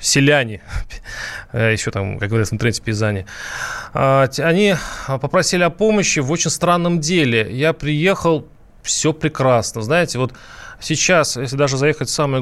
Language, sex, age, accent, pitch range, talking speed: Russian, male, 20-39, native, 120-155 Hz, 135 wpm